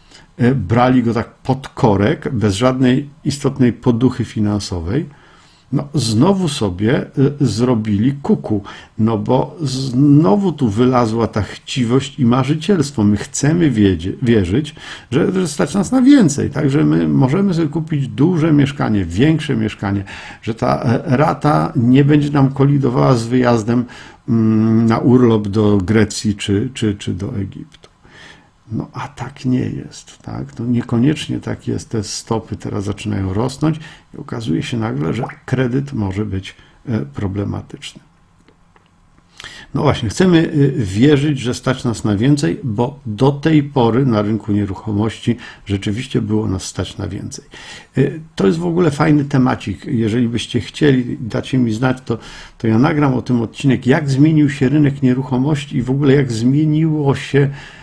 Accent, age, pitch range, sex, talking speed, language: native, 50-69, 110-145 Hz, male, 145 wpm, Polish